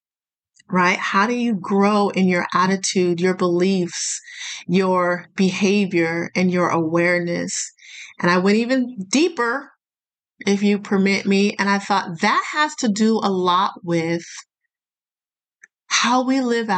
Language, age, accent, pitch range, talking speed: English, 30-49, American, 180-235 Hz, 130 wpm